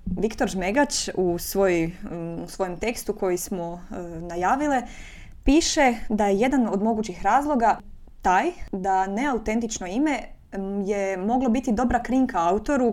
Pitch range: 185-230 Hz